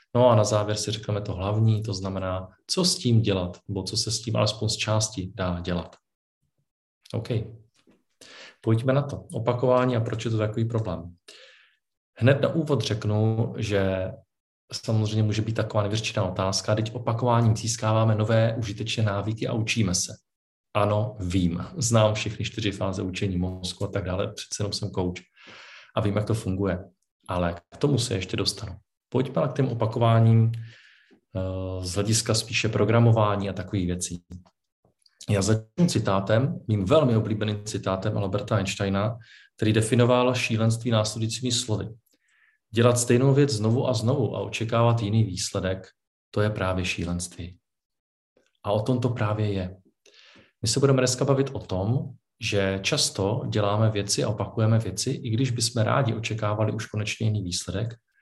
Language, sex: Czech, male